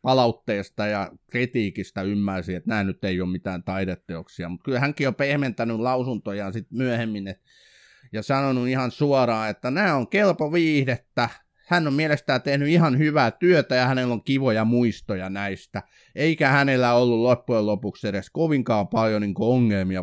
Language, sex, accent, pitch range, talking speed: Finnish, male, native, 100-135 Hz, 150 wpm